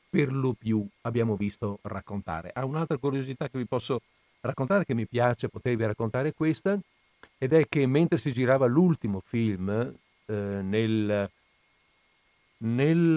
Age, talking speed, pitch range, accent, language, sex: 50-69, 135 wpm, 105-140 Hz, native, Italian, male